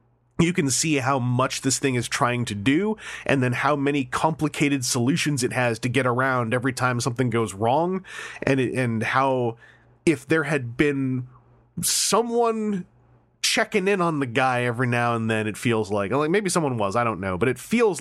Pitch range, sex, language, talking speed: 115-145 Hz, male, English, 195 wpm